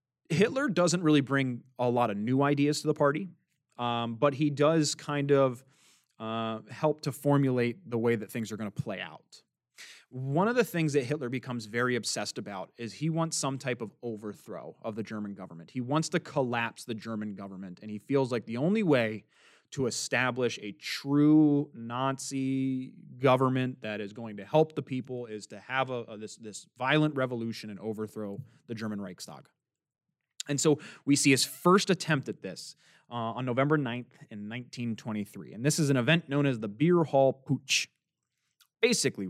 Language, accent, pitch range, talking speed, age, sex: English, American, 115-145 Hz, 185 wpm, 20-39, male